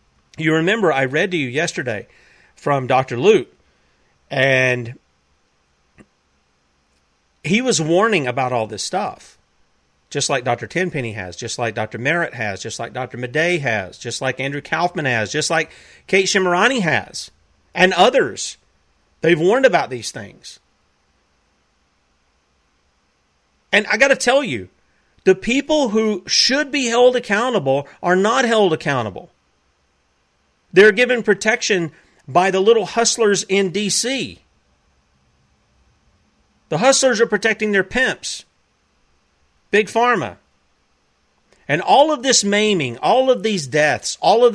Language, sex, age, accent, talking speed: English, male, 40-59, American, 130 wpm